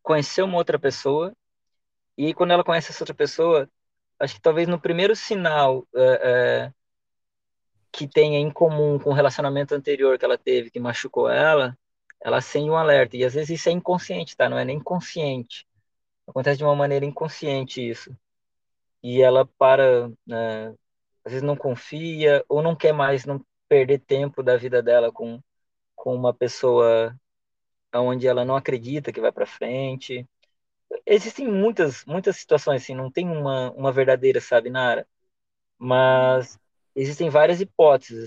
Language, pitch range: Portuguese, 130-180 Hz